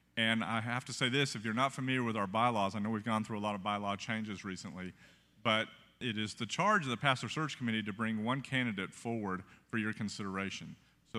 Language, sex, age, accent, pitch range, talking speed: English, male, 40-59, American, 100-120 Hz, 230 wpm